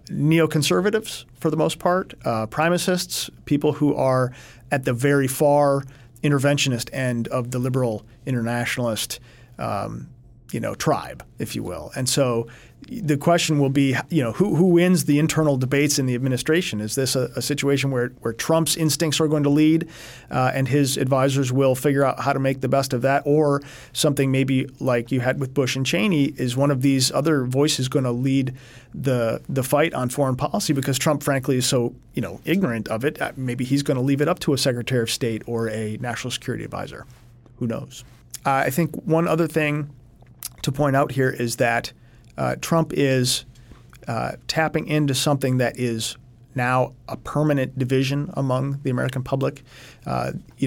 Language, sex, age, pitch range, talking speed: English, male, 40-59, 125-145 Hz, 185 wpm